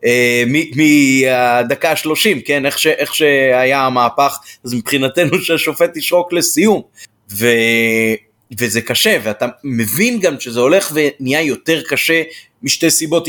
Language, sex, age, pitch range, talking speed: Hebrew, male, 30-49, 120-150 Hz, 115 wpm